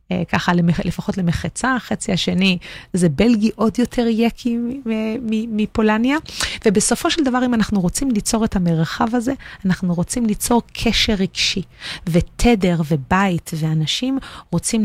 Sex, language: female, Hebrew